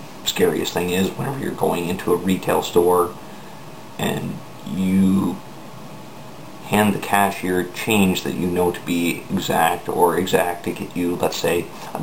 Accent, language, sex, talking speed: American, English, male, 150 wpm